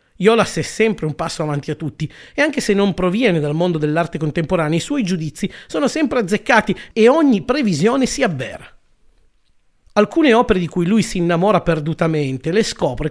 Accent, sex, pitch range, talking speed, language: native, male, 155-215 Hz, 175 wpm, Italian